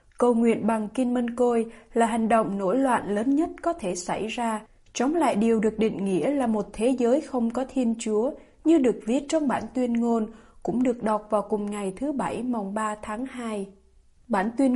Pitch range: 215-280 Hz